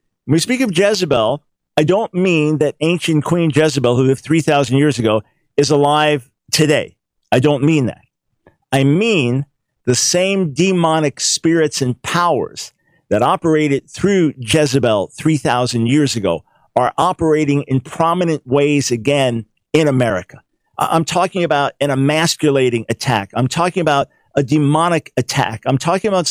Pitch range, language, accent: 135-170 Hz, English, American